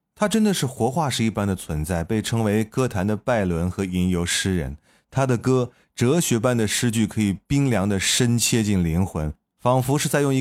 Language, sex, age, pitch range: Chinese, male, 30-49, 90-120 Hz